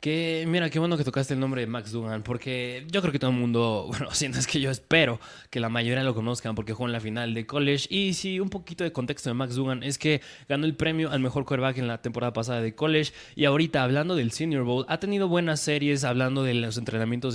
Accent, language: Mexican, Spanish